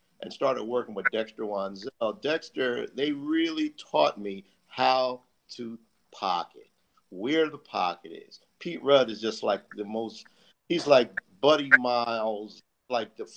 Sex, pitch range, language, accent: male, 110-140 Hz, English, American